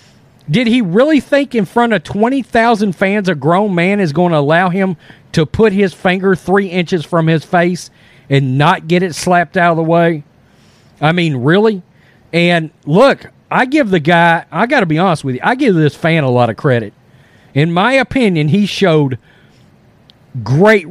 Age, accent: 40-59, American